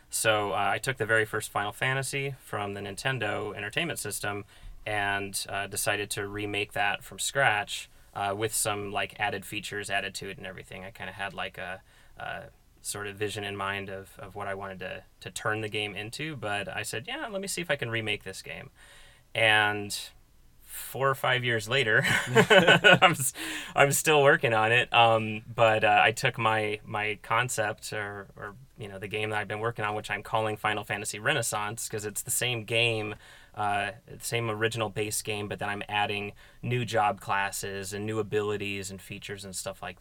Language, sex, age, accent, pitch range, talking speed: English, male, 30-49, American, 100-115 Hz, 195 wpm